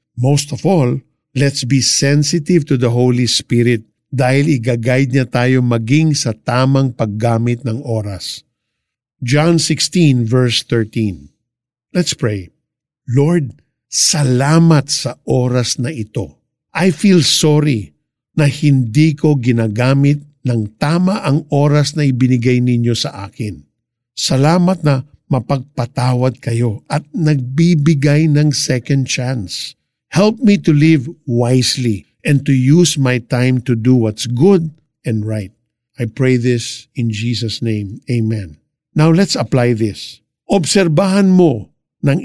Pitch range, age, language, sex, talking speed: 120-155 Hz, 50-69, Filipino, male, 120 wpm